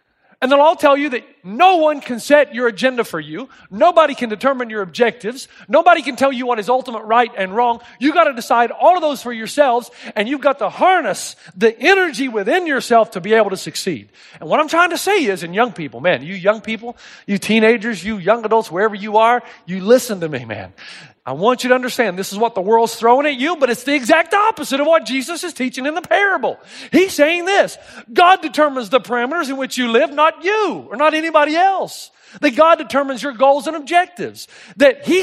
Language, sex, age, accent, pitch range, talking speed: English, male, 40-59, American, 210-305 Hz, 225 wpm